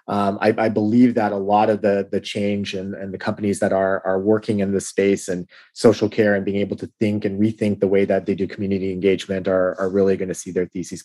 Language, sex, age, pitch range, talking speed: English, male, 30-49, 100-120 Hz, 250 wpm